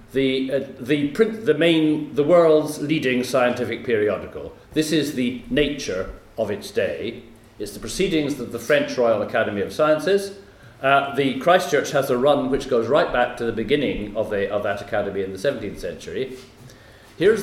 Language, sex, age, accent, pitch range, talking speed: English, male, 40-59, British, 110-145 Hz, 185 wpm